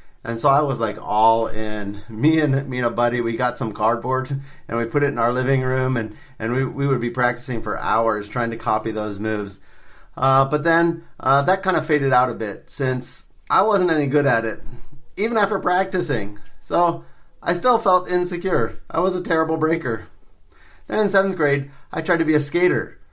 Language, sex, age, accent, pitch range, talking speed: English, male, 30-49, American, 115-145 Hz, 205 wpm